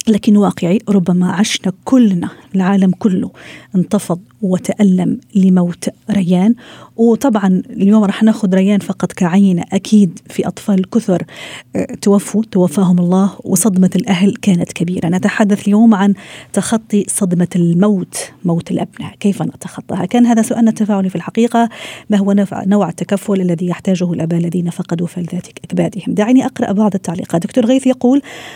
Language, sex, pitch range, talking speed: Arabic, female, 180-210 Hz, 130 wpm